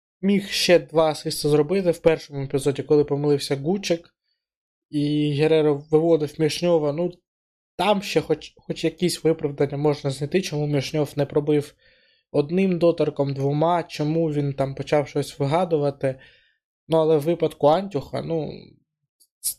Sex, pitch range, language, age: male, 145-160 Hz, Ukrainian, 20-39